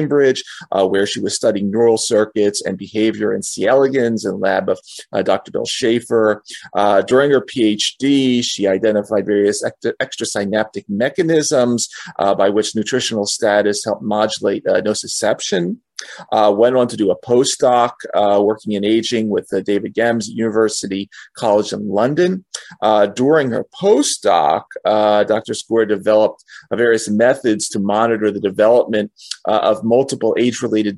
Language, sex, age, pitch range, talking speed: English, male, 30-49, 105-120 Hz, 145 wpm